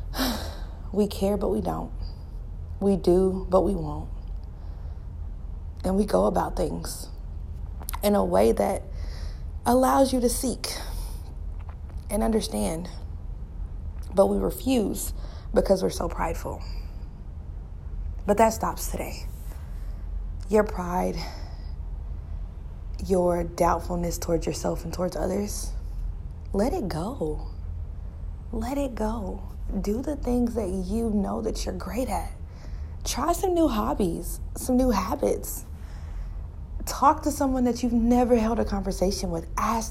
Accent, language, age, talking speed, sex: American, English, 20-39, 120 wpm, female